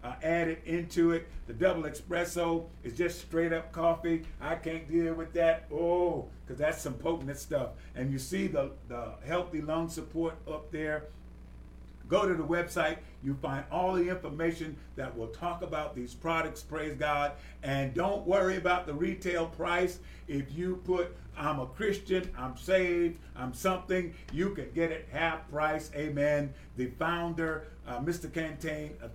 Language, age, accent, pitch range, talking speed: English, 50-69, American, 135-170 Hz, 170 wpm